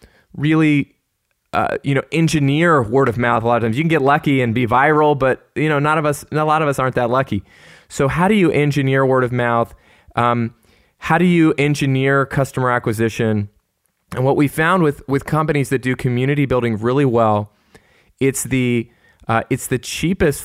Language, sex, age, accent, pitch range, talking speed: English, male, 20-39, American, 115-140 Hz, 195 wpm